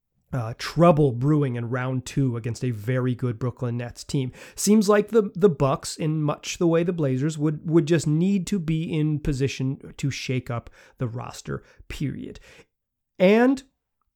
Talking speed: 165 wpm